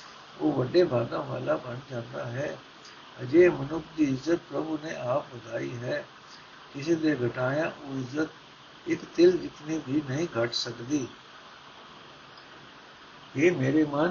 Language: Punjabi